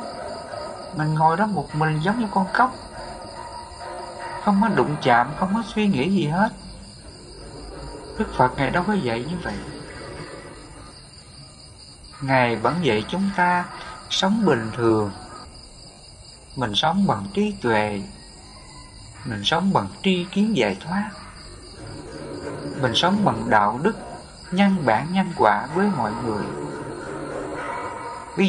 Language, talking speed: English, 125 wpm